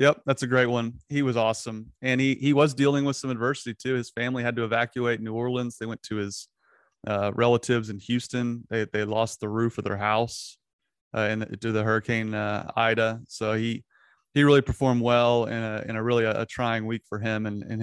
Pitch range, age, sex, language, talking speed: 110-130 Hz, 30-49, male, English, 220 wpm